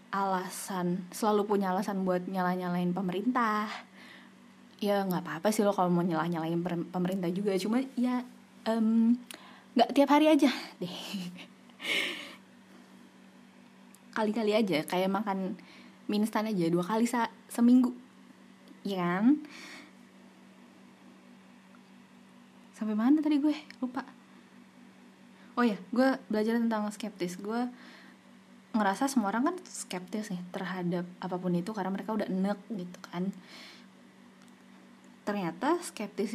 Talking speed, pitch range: 115 wpm, 190-235 Hz